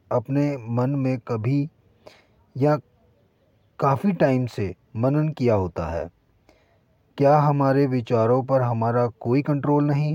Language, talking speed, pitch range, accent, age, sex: Hindi, 120 wpm, 110-150 Hz, native, 30-49, male